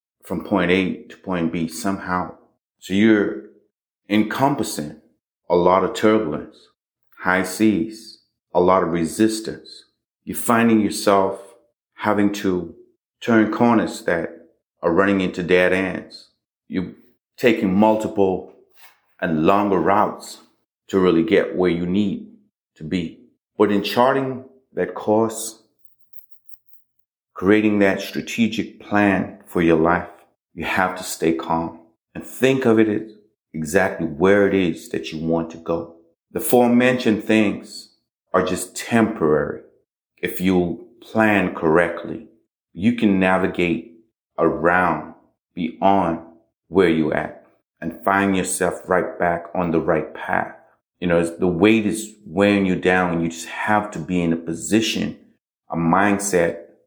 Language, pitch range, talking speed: English, 85-110 Hz, 130 wpm